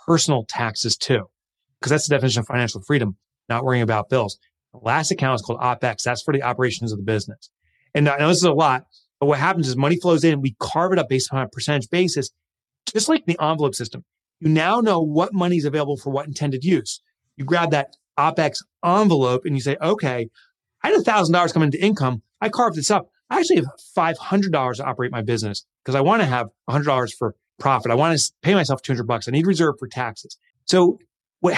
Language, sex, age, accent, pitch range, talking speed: English, male, 30-49, American, 125-170 Hz, 230 wpm